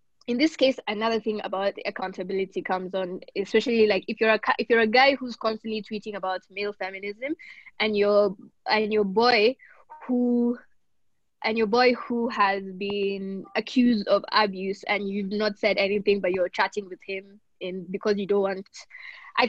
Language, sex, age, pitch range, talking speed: English, female, 20-39, 200-235 Hz, 170 wpm